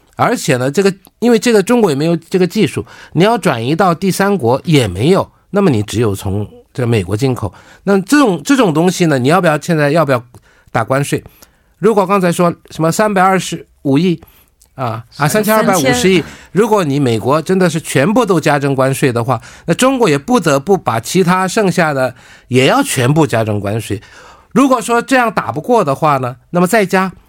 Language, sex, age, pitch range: Korean, male, 50-69, 130-185 Hz